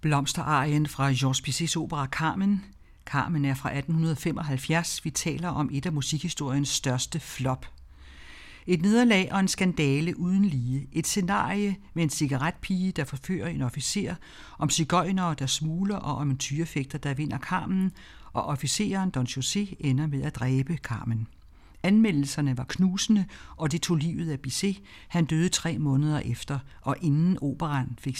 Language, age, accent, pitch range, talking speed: Danish, 60-79, native, 135-175 Hz, 155 wpm